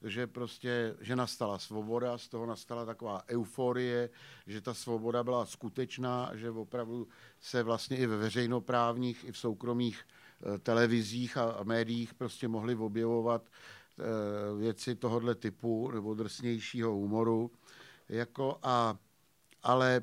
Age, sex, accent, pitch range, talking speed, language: 50-69, male, native, 115-140 Hz, 120 wpm, Czech